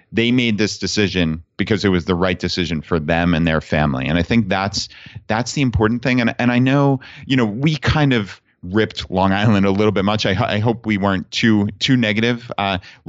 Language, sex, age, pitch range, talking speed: English, male, 30-49, 100-115 Hz, 220 wpm